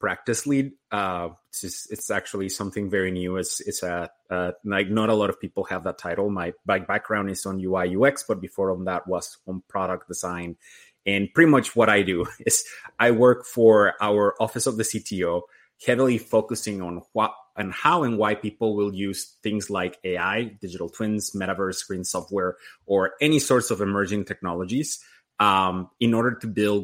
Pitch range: 95-115 Hz